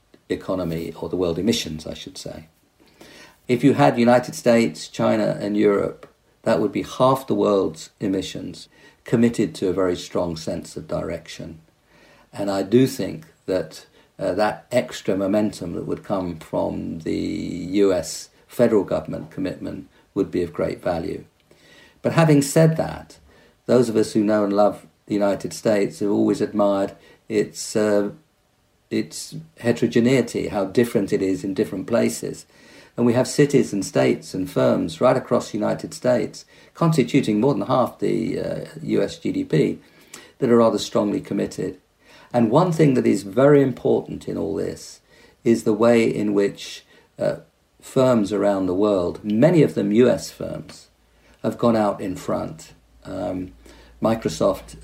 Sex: male